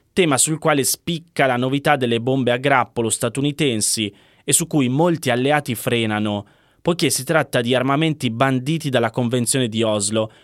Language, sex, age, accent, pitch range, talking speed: Italian, male, 20-39, native, 110-135 Hz, 155 wpm